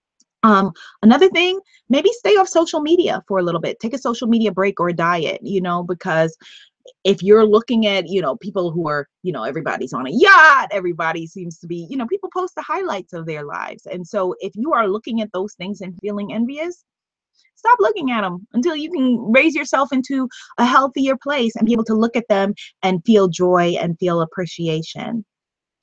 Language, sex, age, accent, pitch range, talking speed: English, female, 20-39, American, 180-265 Hz, 205 wpm